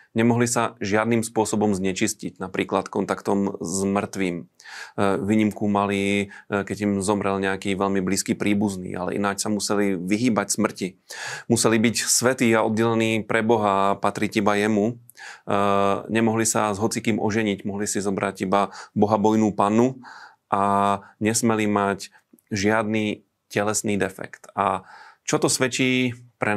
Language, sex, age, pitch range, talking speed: Slovak, male, 30-49, 100-110 Hz, 130 wpm